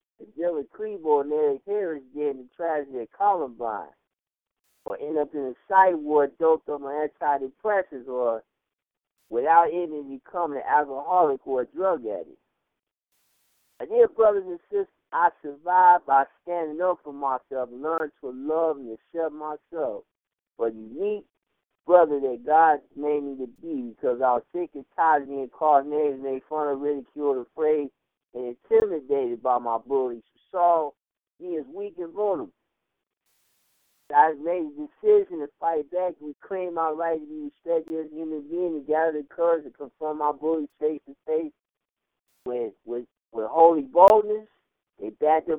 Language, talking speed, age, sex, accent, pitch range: English, 165 wpm, 50-69, male, American, 140-185 Hz